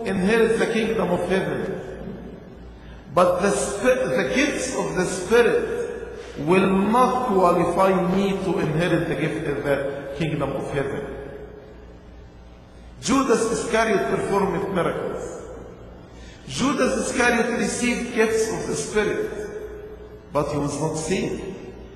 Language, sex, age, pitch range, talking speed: English, male, 50-69, 155-240 Hz, 110 wpm